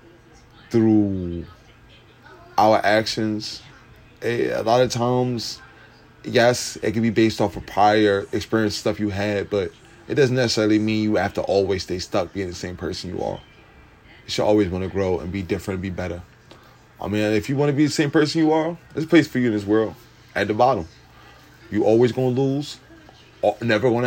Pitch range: 95-115 Hz